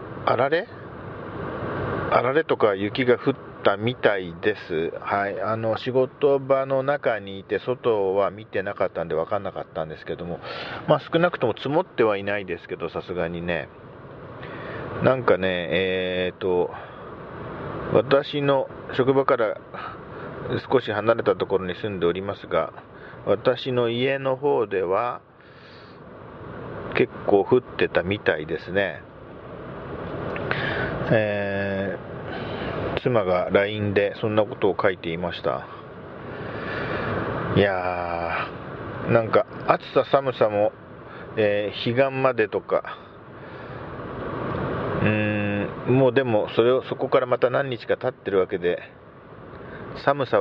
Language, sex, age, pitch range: Japanese, male, 40-59, 95-130 Hz